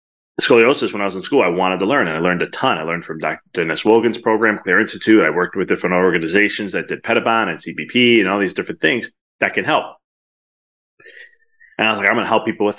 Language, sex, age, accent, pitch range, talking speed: English, male, 30-49, American, 90-140 Hz, 245 wpm